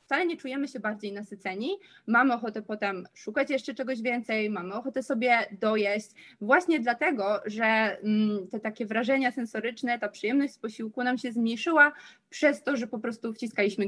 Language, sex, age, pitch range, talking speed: Polish, female, 20-39, 210-255 Hz, 160 wpm